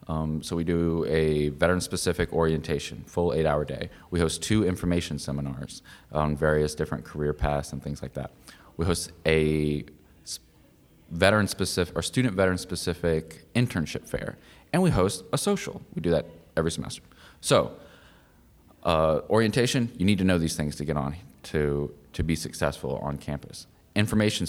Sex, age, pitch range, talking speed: male, 20-39, 75-100 Hz, 145 wpm